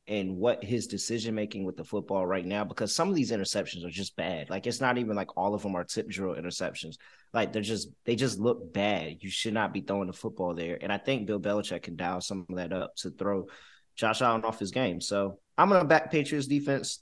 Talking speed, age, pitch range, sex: 245 wpm, 20-39, 100-125 Hz, male